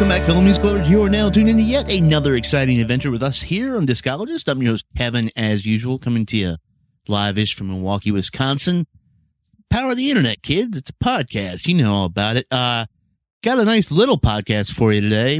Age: 30-49